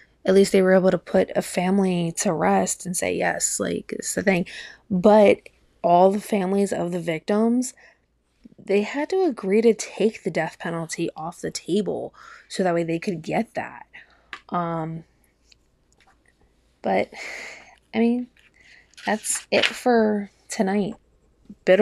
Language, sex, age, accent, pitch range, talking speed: English, female, 20-39, American, 185-230 Hz, 145 wpm